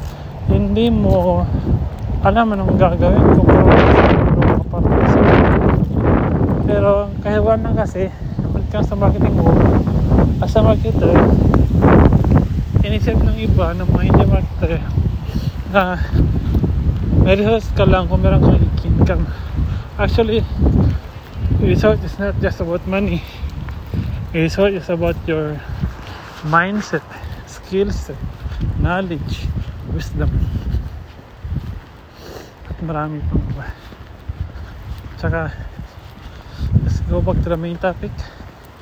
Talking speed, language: 70 wpm, English